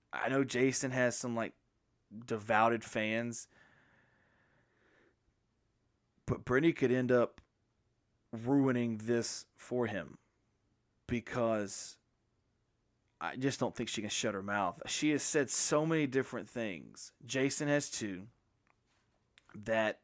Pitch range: 110-135 Hz